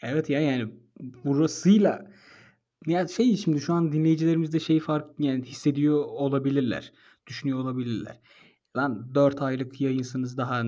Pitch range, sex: 130-155 Hz, male